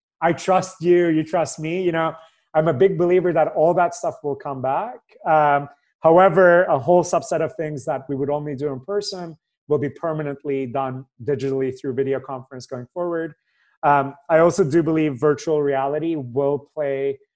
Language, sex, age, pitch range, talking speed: English, male, 30-49, 140-180 Hz, 180 wpm